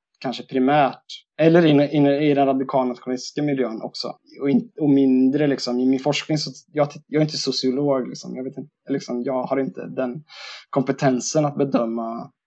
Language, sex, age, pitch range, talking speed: Swedish, male, 20-39, 125-145 Hz, 170 wpm